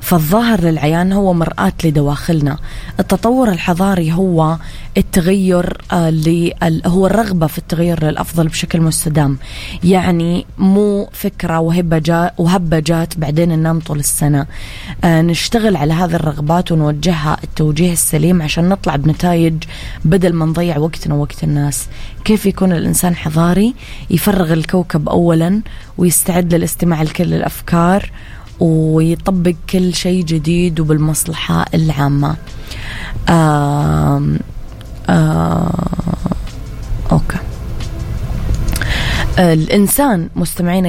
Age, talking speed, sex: 20-39, 95 wpm, female